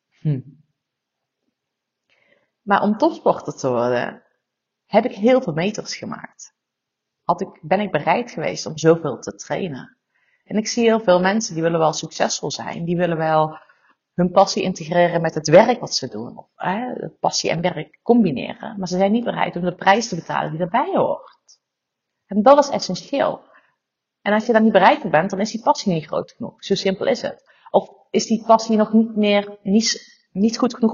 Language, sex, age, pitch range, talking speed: Dutch, female, 40-59, 170-225 Hz, 185 wpm